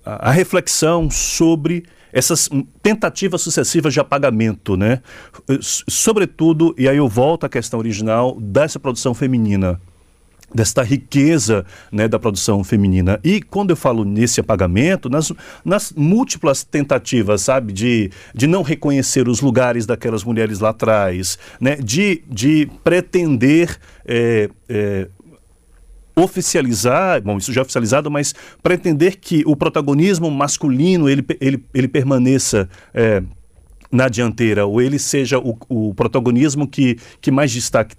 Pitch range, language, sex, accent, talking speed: 110-160 Hz, Portuguese, male, Brazilian, 125 wpm